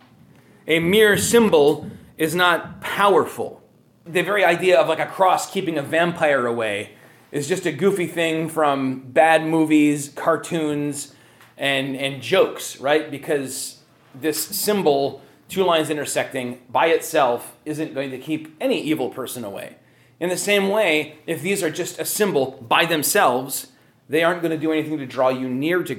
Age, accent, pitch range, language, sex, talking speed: 30-49, American, 135-170 Hz, English, male, 160 wpm